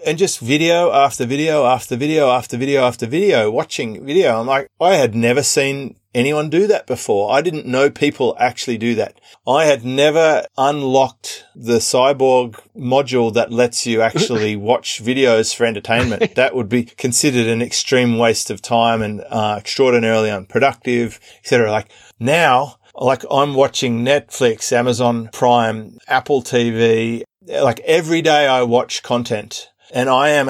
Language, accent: English, Australian